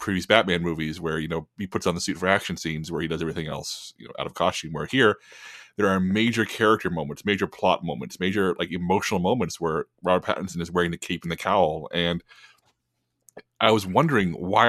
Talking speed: 215 wpm